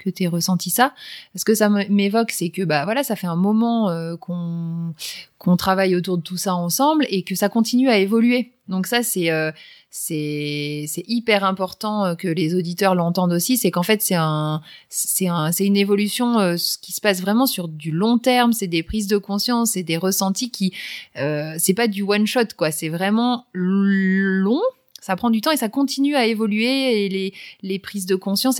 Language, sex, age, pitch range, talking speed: French, female, 30-49, 180-230 Hz, 210 wpm